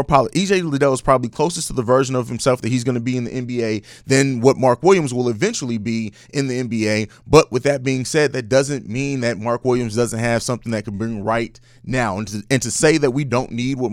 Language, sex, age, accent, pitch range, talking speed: English, male, 30-49, American, 120-150 Hz, 245 wpm